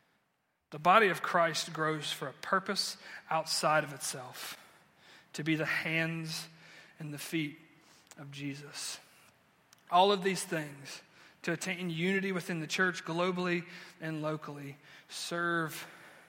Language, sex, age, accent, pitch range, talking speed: English, male, 30-49, American, 150-170 Hz, 125 wpm